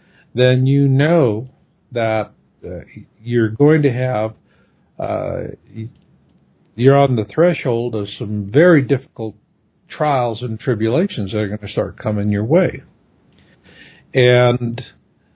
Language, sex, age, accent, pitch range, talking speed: English, male, 50-69, American, 110-145 Hz, 115 wpm